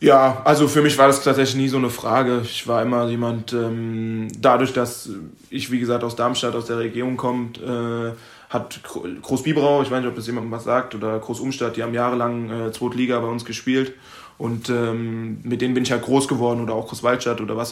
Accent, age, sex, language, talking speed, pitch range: German, 20-39, male, German, 215 wpm, 120-130 Hz